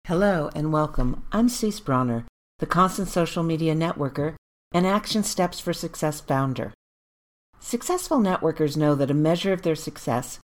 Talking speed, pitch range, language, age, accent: 150 wpm, 135-200 Hz, English, 50-69, American